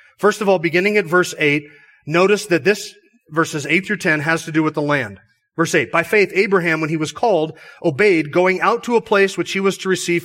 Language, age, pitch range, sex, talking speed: English, 30-49, 150-195 Hz, male, 235 wpm